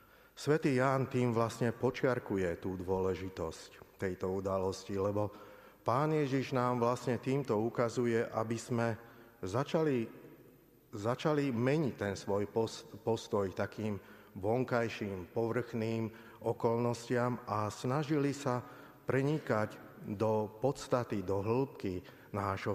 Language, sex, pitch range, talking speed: Slovak, male, 105-130 Hz, 100 wpm